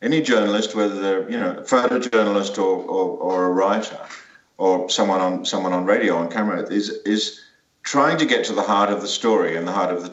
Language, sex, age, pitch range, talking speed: English, male, 50-69, 95-110 Hz, 220 wpm